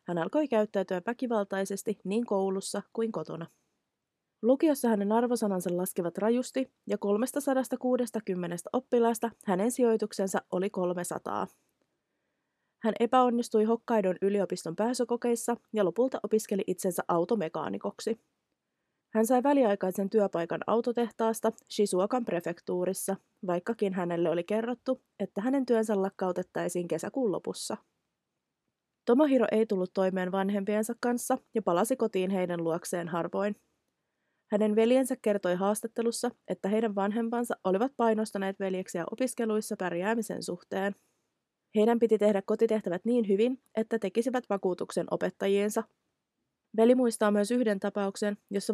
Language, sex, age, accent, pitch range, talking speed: Finnish, female, 20-39, native, 190-235 Hz, 110 wpm